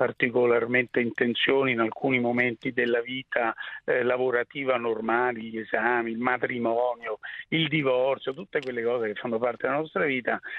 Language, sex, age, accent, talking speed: Italian, male, 50-69, native, 140 wpm